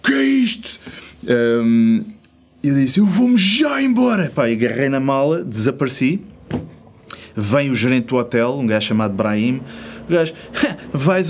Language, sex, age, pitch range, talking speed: Portuguese, male, 20-39, 105-135 Hz, 140 wpm